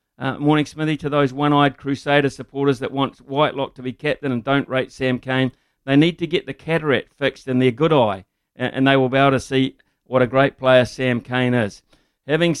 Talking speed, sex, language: 220 wpm, male, English